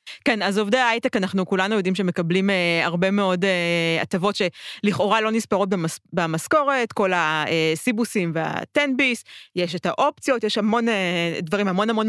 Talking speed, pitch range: 160 wpm, 175-220 Hz